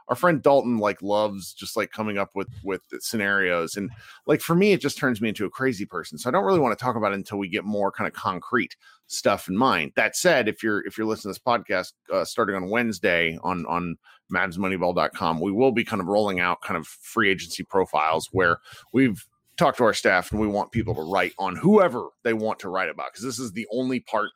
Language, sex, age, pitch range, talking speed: English, male, 30-49, 95-130 Hz, 240 wpm